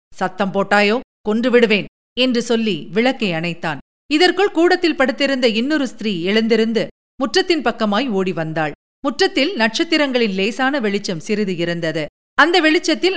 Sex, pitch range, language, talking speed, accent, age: female, 195-275 Hz, Tamil, 110 wpm, native, 50-69